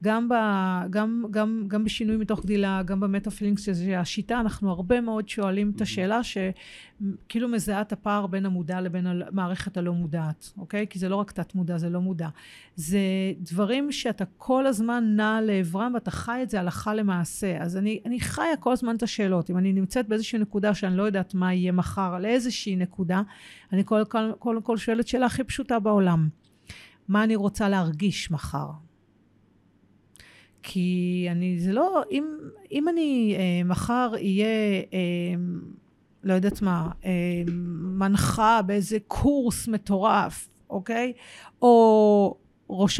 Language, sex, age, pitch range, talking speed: Hebrew, female, 40-59, 180-225 Hz, 155 wpm